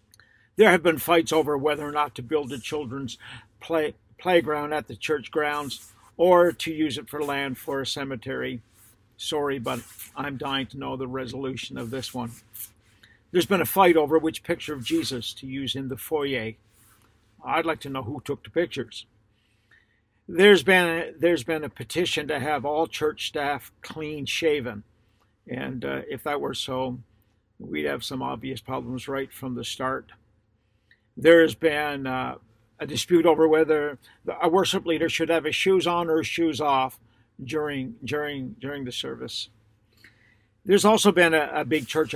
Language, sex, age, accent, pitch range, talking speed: English, male, 50-69, American, 115-155 Hz, 165 wpm